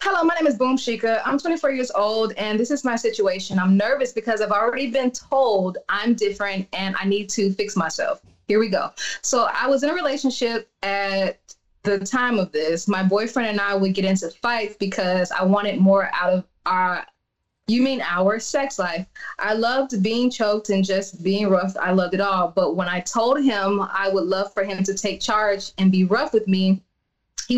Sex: female